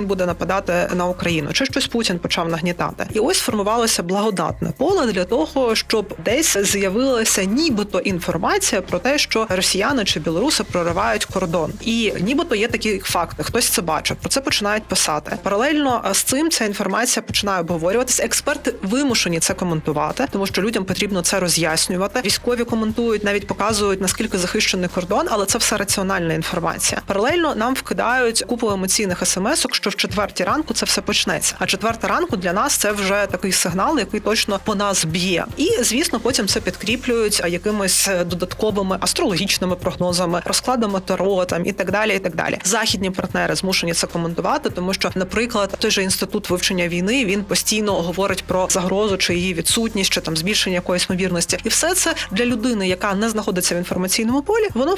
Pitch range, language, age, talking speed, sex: 185-230 Hz, Ukrainian, 30-49, 165 wpm, female